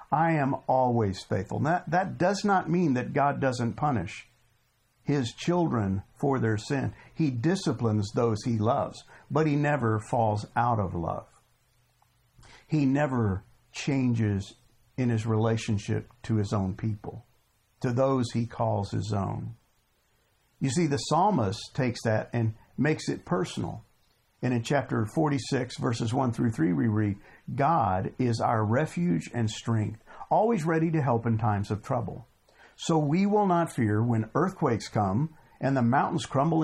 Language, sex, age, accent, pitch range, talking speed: English, male, 50-69, American, 110-145 Hz, 150 wpm